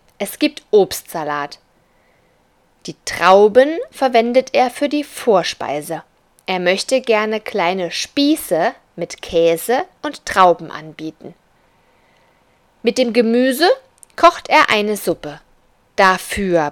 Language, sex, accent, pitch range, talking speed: German, female, German, 170-270 Hz, 100 wpm